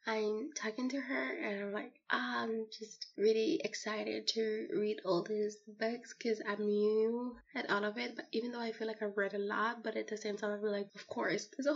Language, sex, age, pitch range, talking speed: English, female, 20-39, 210-240 Hz, 225 wpm